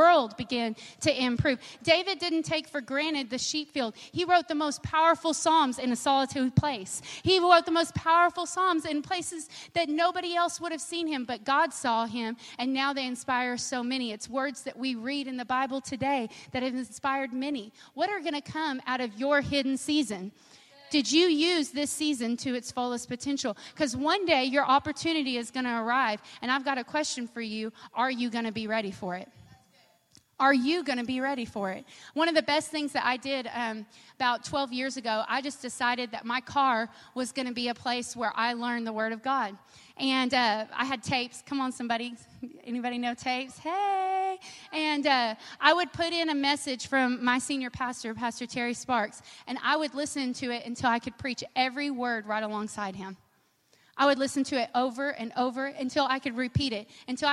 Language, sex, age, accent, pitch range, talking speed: English, female, 30-49, American, 235-290 Hz, 205 wpm